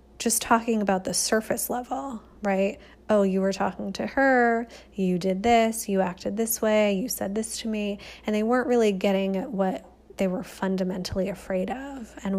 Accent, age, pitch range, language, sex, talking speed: American, 20-39, 195-225 Hz, English, female, 185 wpm